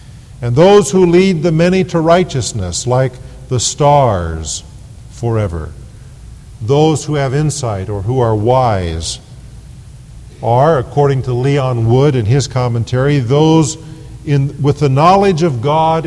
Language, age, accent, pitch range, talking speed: English, 50-69, American, 120-160 Hz, 125 wpm